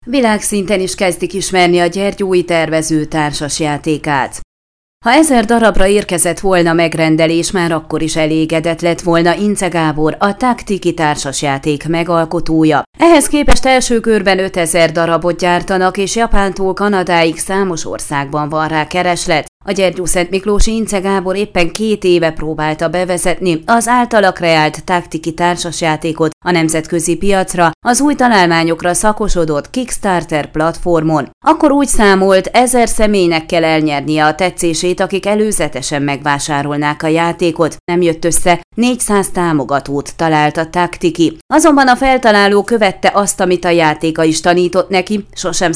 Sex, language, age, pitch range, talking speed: female, Hungarian, 30-49, 160-200 Hz, 130 wpm